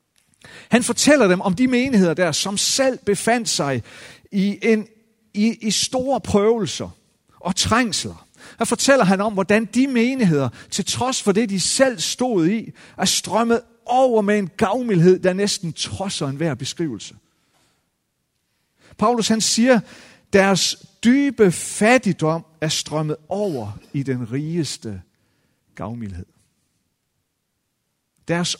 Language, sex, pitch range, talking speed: Danish, male, 135-225 Hz, 125 wpm